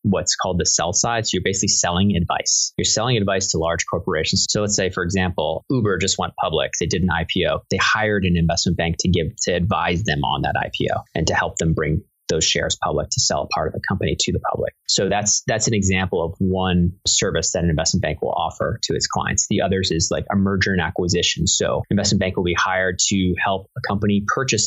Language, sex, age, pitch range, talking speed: English, male, 20-39, 90-110 Hz, 235 wpm